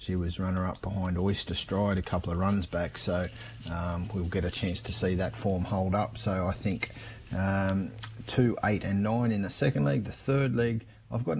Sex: male